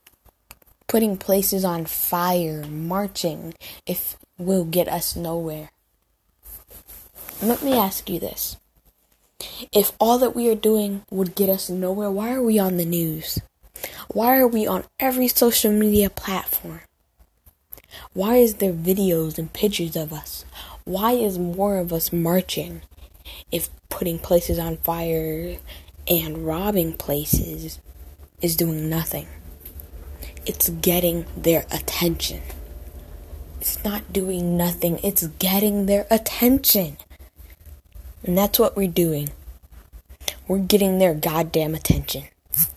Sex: female